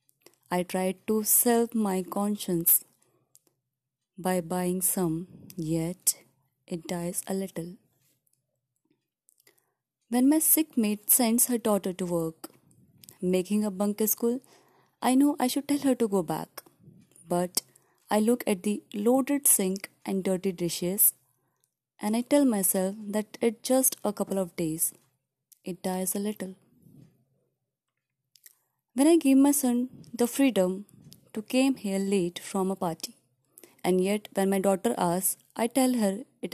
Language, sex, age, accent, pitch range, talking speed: Hindi, female, 20-39, native, 170-235 Hz, 140 wpm